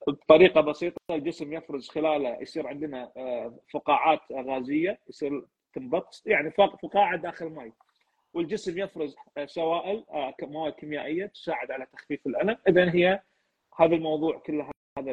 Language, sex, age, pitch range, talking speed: Arabic, male, 30-49, 145-200 Hz, 120 wpm